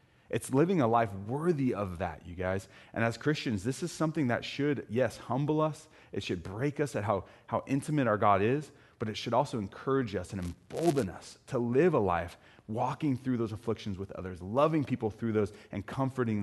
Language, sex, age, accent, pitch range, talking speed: English, male, 30-49, American, 100-125 Hz, 205 wpm